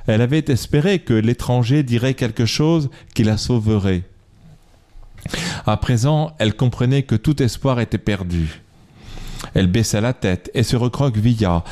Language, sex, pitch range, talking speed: French, male, 100-140 Hz, 140 wpm